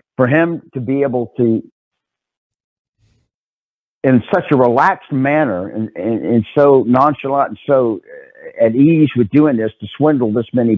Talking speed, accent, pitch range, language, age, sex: 145 wpm, American, 105-135 Hz, English, 50-69, male